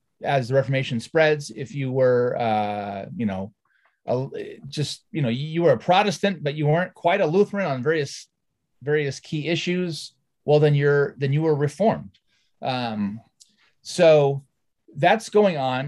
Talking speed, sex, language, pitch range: 150 wpm, male, English, 115-160 Hz